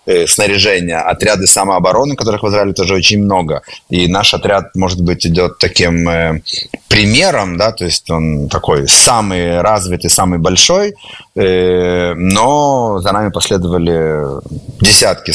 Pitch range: 90-110 Hz